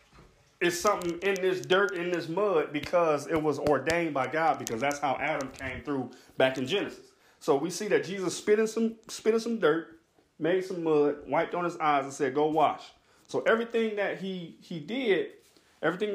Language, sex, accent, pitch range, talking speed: English, male, American, 150-200 Hz, 190 wpm